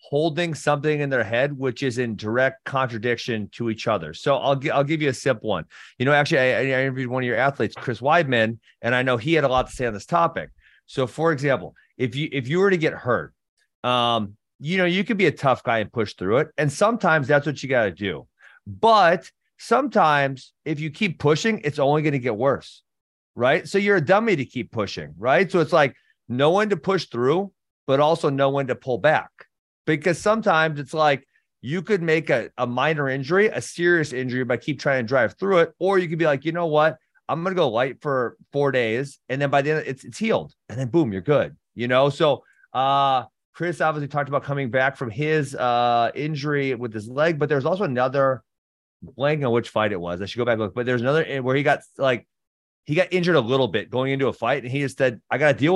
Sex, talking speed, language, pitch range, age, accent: male, 235 wpm, English, 125-155 Hz, 30-49, American